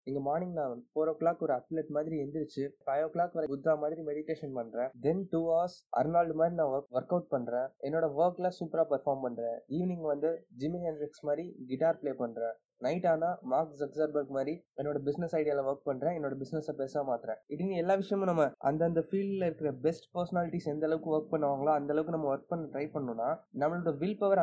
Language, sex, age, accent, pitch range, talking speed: Tamil, male, 20-39, native, 140-170 Hz, 190 wpm